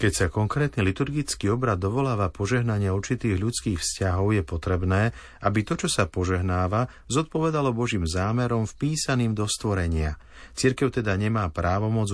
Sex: male